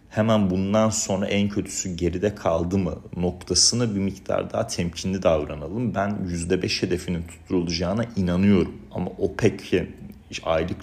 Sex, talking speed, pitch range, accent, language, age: male, 120 wpm, 85-100 Hz, native, Turkish, 40-59